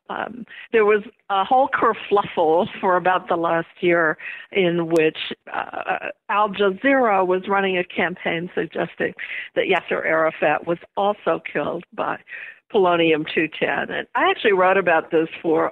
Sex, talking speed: female, 140 wpm